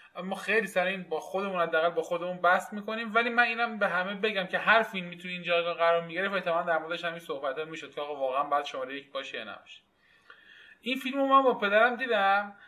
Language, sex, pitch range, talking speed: Persian, male, 160-210 Hz, 205 wpm